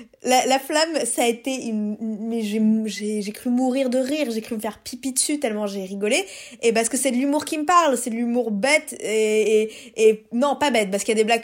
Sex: female